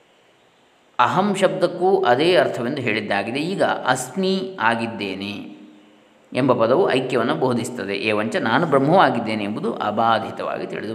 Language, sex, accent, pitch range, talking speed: Kannada, male, native, 120-170 Hz, 105 wpm